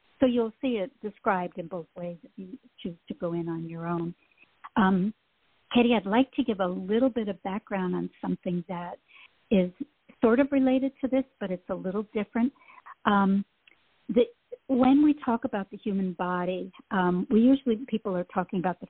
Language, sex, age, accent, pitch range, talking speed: English, female, 60-79, American, 185-245 Hz, 185 wpm